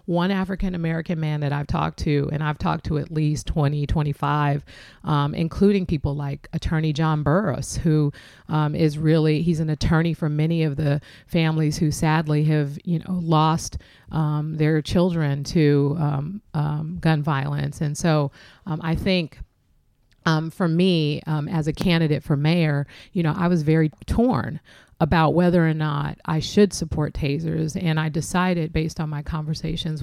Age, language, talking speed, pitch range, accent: 40-59, English, 165 wpm, 150-165 Hz, American